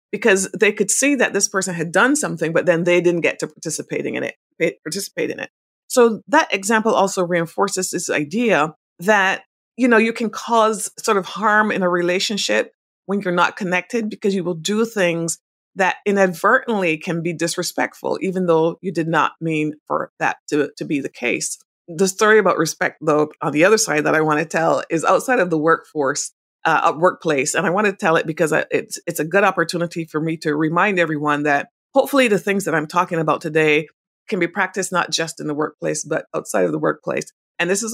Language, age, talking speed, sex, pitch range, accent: English, 30-49, 205 wpm, female, 165-200 Hz, American